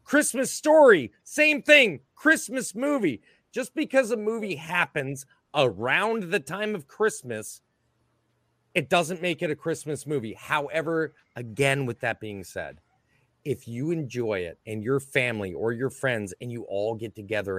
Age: 30-49